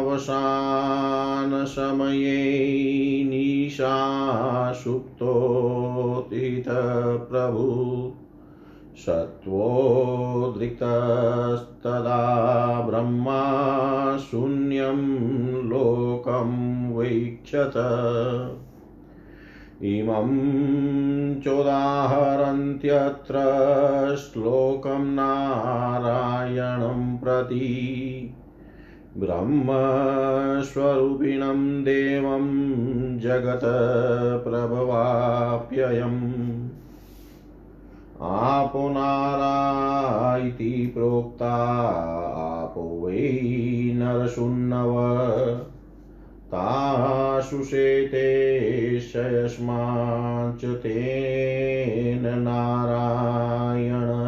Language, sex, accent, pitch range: Hindi, male, native, 120-135 Hz